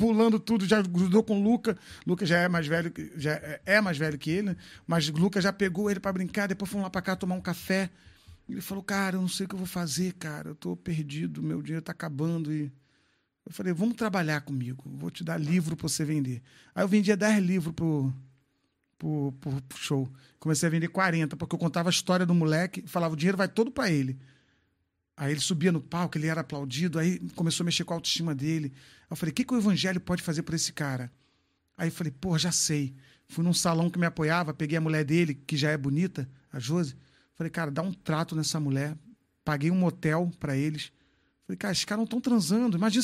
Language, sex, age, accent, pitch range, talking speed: Portuguese, male, 40-59, Brazilian, 150-195 Hz, 235 wpm